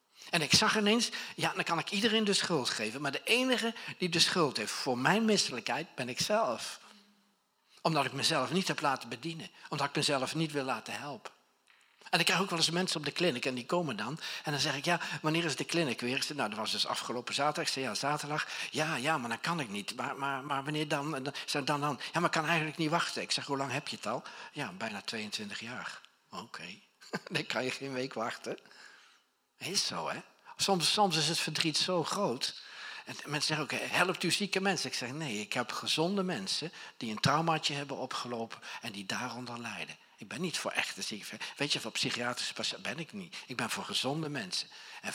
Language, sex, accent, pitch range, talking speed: Dutch, male, Dutch, 135-180 Hz, 230 wpm